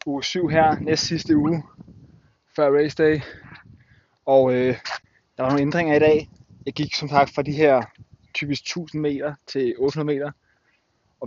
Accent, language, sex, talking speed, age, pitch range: native, Danish, male, 165 wpm, 20-39, 130-145 Hz